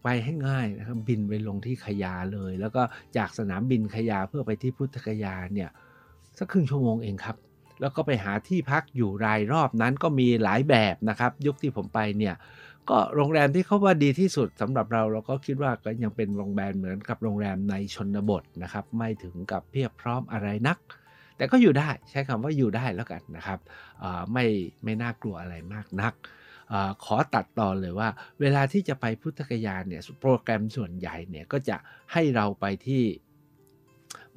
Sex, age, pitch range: male, 60-79, 100-135 Hz